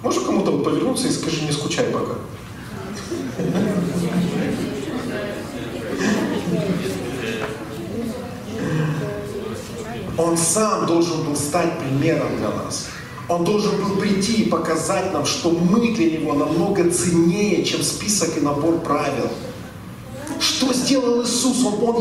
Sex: male